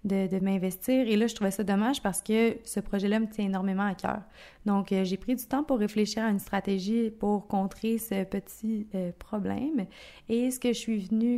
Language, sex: French, female